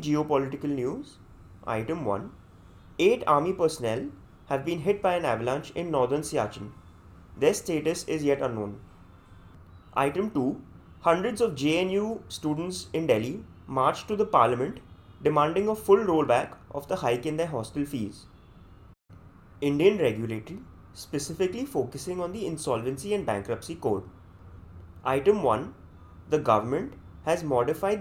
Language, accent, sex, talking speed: English, Indian, male, 130 wpm